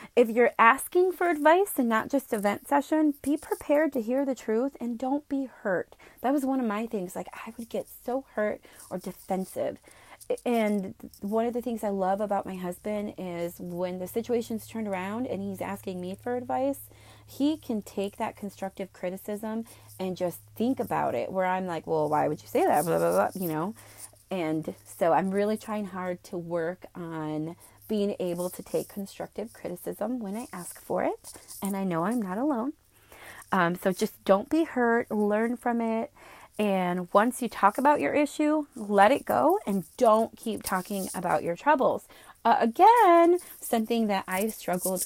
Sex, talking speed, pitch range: female, 185 wpm, 190-260 Hz